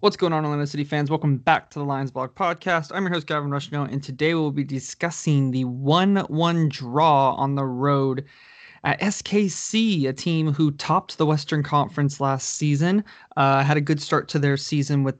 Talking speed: 195 wpm